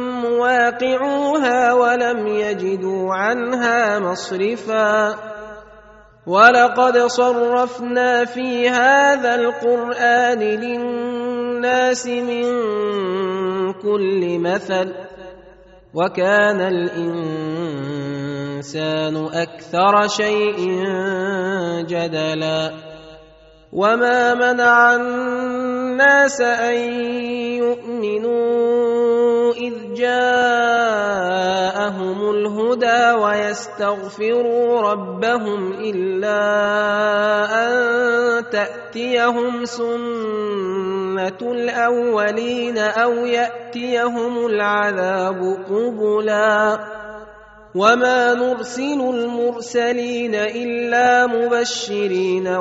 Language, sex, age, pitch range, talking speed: Arabic, male, 30-49, 195-240 Hz, 50 wpm